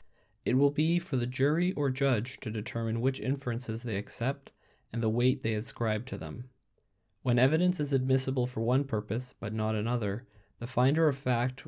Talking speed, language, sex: 180 wpm, English, male